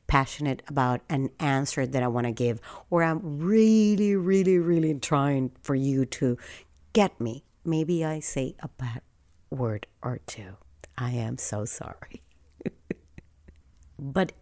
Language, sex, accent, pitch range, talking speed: English, female, American, 125-190 Hz, 135 wpm